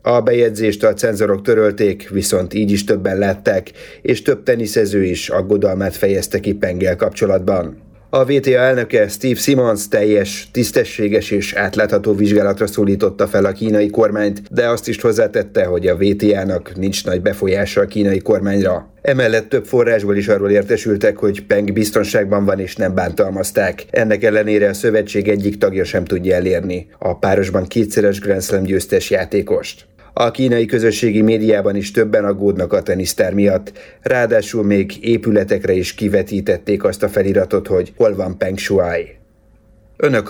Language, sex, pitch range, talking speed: Hungarian, male, 100-115 Hz, 145 wpm